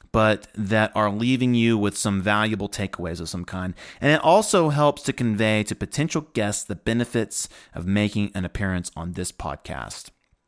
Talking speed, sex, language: 170 wpm, male, English